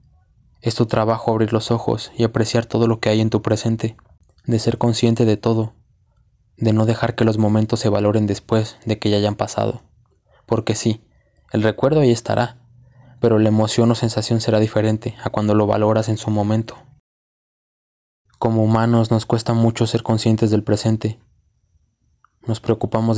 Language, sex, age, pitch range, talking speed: Spanish, male, 20-39, 110-120 Hz, 170 wpm